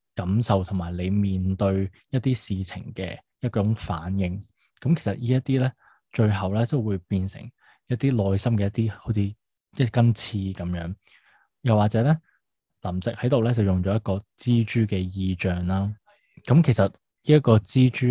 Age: 20-39